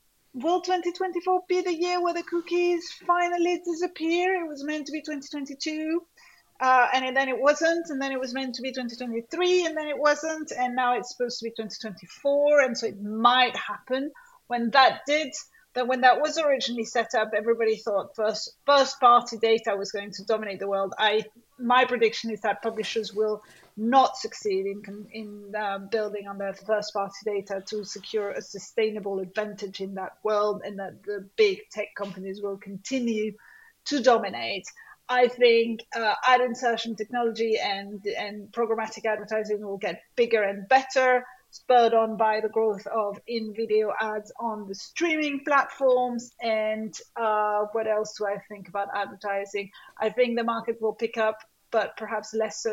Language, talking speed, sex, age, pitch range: English, 170 wpm, female, 30-49, 210-270 Hz